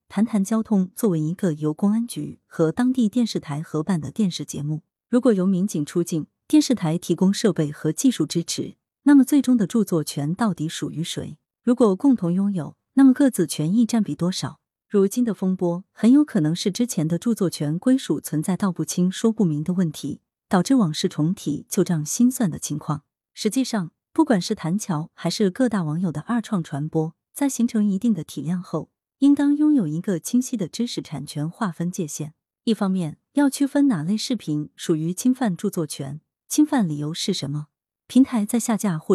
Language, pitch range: Chinese, 160-230 Hz